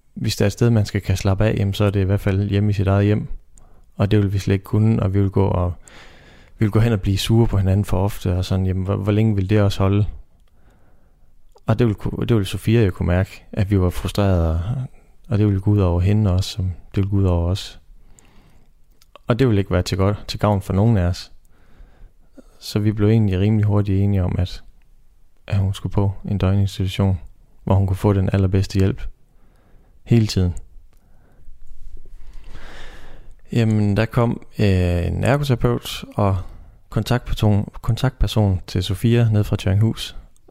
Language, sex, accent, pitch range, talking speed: Danish, male, native, 95-110 Hz, 195 wpm